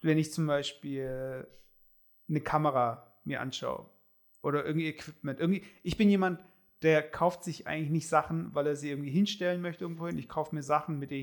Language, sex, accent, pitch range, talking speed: German, male, German, 140-170 Hz, 185 wpm